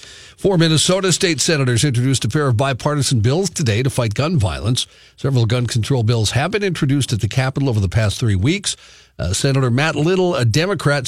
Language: English